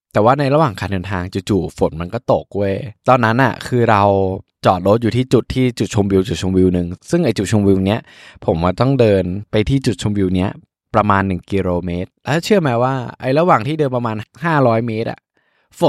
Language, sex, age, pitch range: Thai, male, 20-39, 105-135 Hz